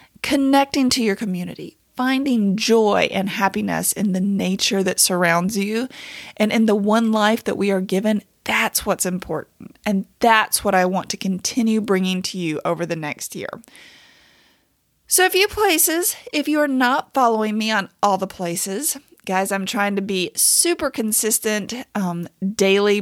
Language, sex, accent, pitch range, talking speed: English, female, American, 190-255 Hz, 165 wpm